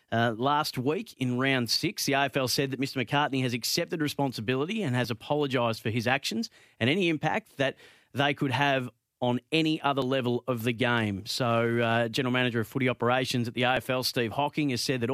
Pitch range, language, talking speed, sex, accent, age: 120-145 Hz, English, 200 wpm, male, Australian, 30-49